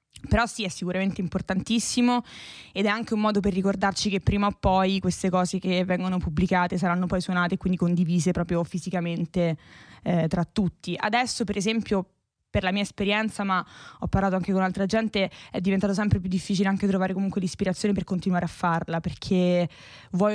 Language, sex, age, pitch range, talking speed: Italian, female, 20-39, 180-205 Hz, 180 wpm